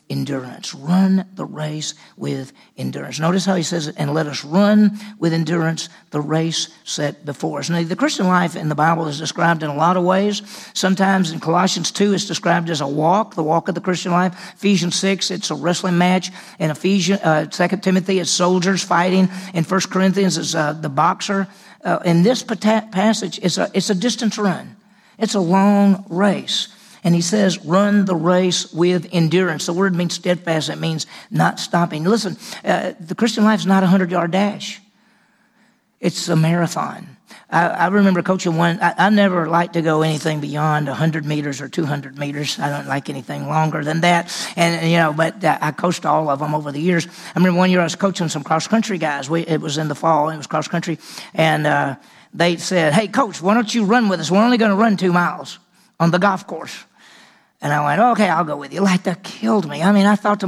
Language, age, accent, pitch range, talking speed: English, 50-69, American, 160-200 Hz, 210 wpm